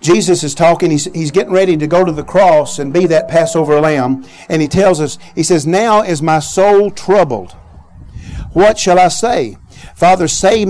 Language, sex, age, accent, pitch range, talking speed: English, male, 50-69, American, 140-190 Hz, 185 wpm